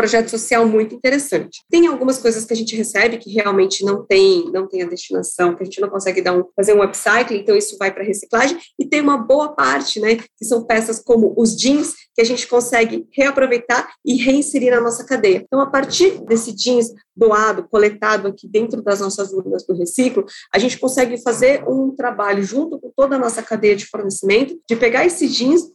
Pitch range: 215-265 Hz